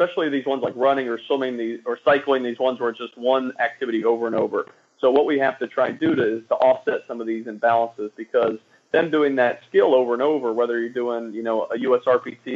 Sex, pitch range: male, 115-135 Hz